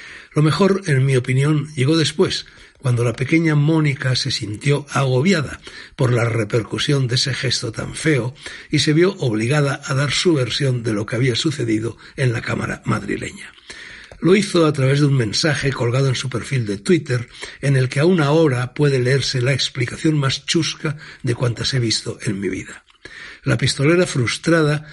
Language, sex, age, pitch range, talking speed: Spanish, male, 60-79, 120-150 Hz, 175 wpm